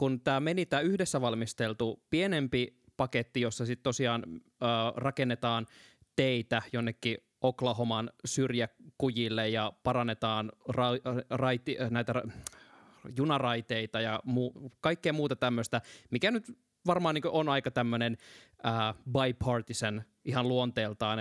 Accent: native